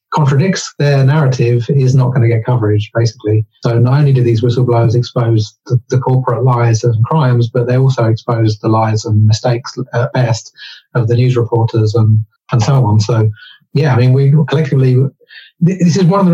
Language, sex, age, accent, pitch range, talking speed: English, male, 30-49, British, 120-140 Hz, 190 wpm